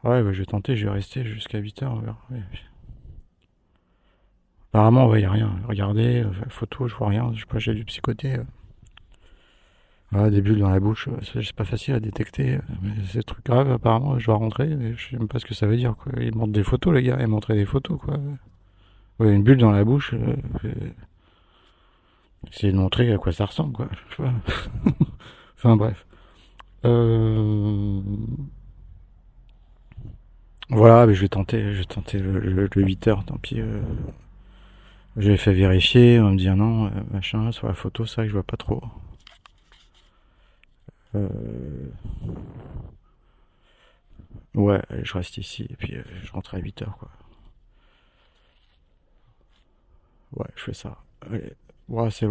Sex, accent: male, French